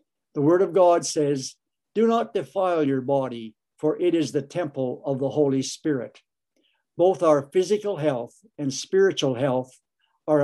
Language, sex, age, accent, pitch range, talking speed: English, male, 60-79, American, 135-170 Hz, 155 wpm